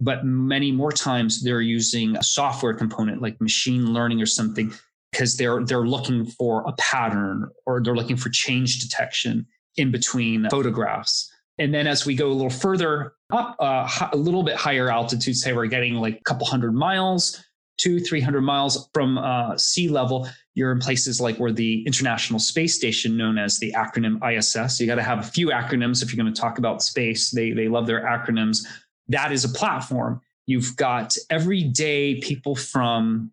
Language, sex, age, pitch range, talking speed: English, male, 20-39, 115-140 Hz, 185 wpm